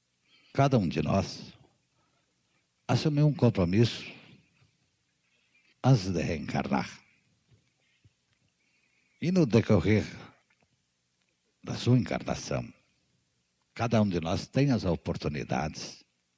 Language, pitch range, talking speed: Portuguese, 80-120 Hz, 85 wpm